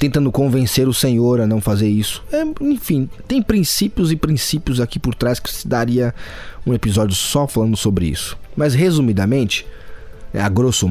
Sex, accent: male, Brazilian